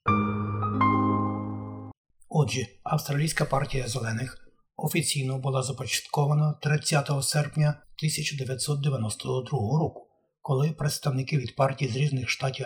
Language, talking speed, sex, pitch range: Ukrainian, 85 wpm, male, 135-155 Hz